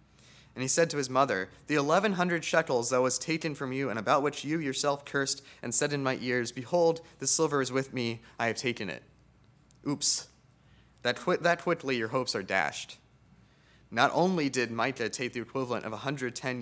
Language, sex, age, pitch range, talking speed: English, male, 20-39, 115-145 Hz, 190 wpm